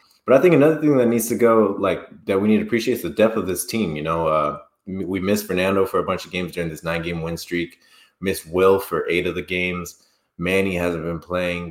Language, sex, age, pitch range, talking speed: English, male, 20-39, 90-110 Hz, 245 wpm